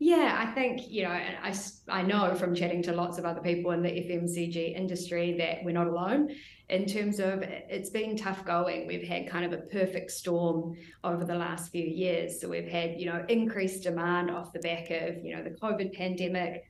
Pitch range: 170-190 Hz